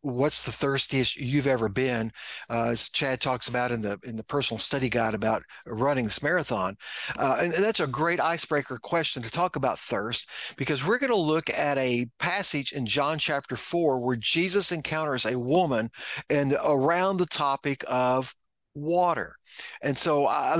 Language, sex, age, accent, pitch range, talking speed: English, male, 50-69, American, 130-185 Hz, 175 wpm